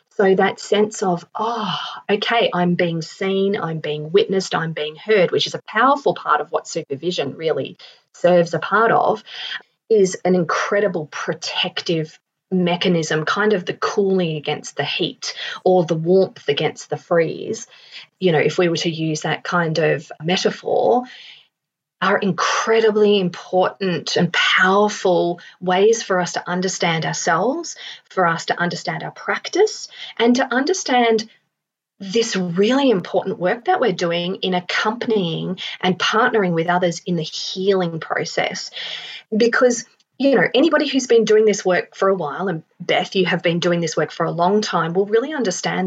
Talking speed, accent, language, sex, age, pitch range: 160 wpm, Australian, English, female, 30-49, 170-220 Hz